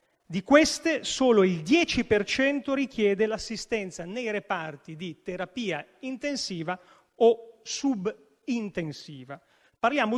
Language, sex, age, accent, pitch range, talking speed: Italian, male, 40-59, native, 180-245 Hz, 90 wpm